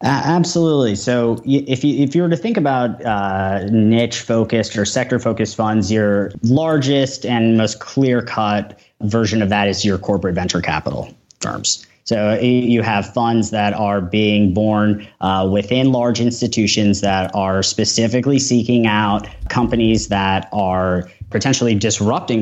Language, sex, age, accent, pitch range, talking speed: English, male, 30-49, American, 100-120 Hz, 145 wpm